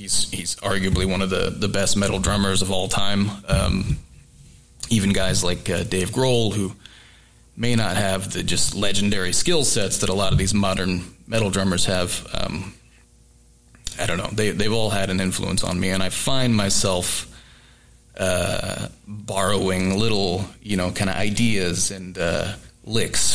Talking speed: 165 wpm